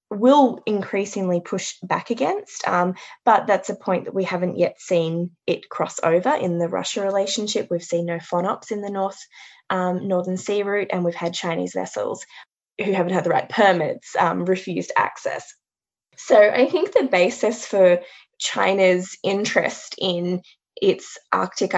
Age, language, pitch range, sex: 20-39, English, 175-210 Hz, female